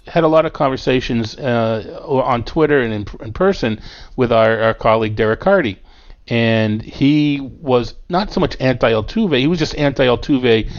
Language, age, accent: English, 40-59, American